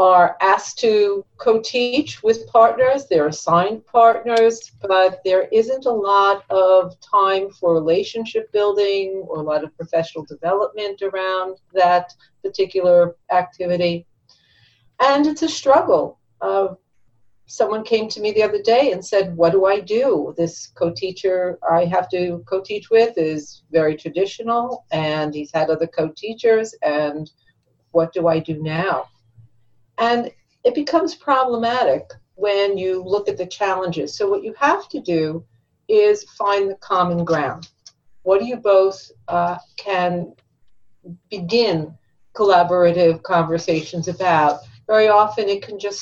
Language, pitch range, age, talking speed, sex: English, 165-205 Hz, 50-69, 135 wpm, female